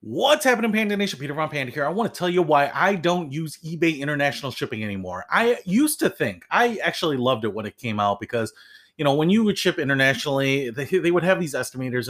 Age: 30-49